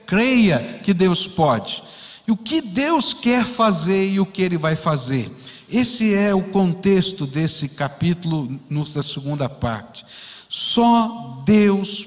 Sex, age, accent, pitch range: male, 60-79, Brazilian, 160-215 Hz